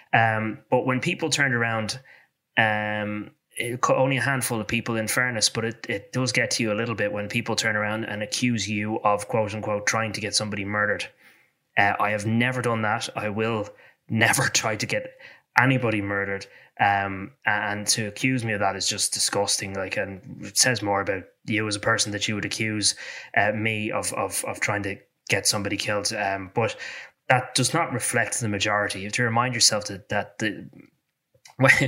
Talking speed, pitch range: 195 wpm, 100-115 Hz